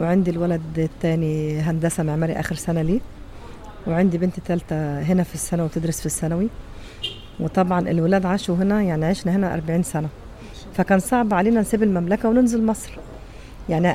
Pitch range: 160-200 Hz